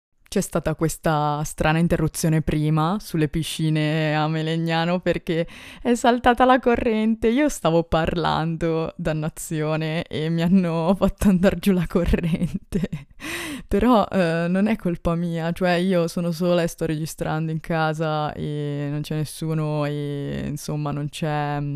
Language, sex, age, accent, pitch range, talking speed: Italian, female, 20-39, native, 150-175 Hz, 140 wpm